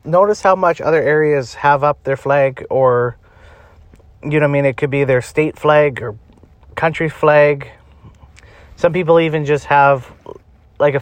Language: English